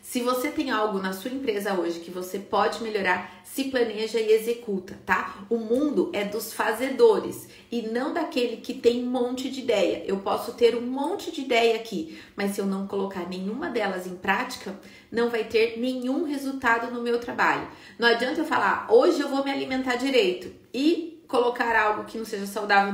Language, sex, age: Portuguese, female, 30-49